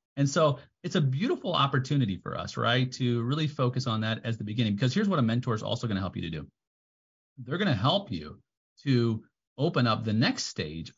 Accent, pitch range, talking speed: American, 105-140 Hz, 225 wpm